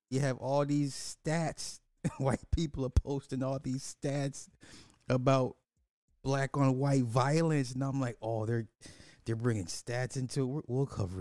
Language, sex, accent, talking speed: English, male, American, 155 wpm